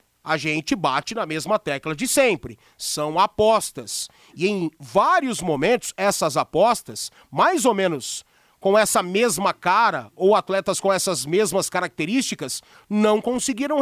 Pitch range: 185-265 Hz